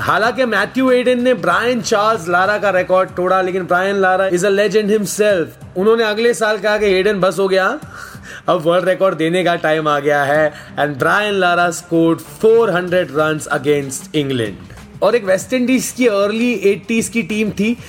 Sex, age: male, 20-39